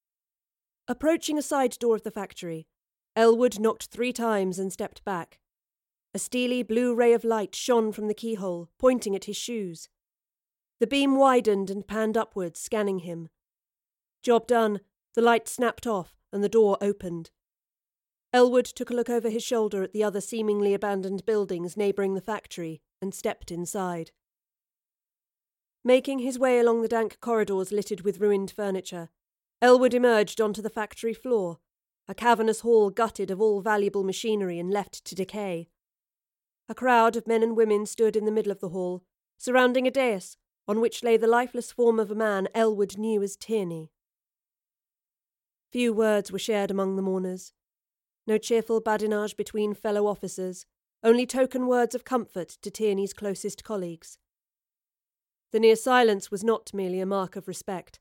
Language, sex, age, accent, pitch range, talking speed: English, female, 40-59, British, 195-230 Hz, 160 wpm